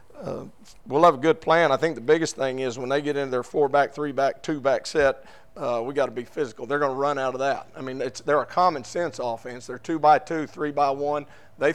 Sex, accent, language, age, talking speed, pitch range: male, American, English, 50-69, 270 wpm, 130-150 Hz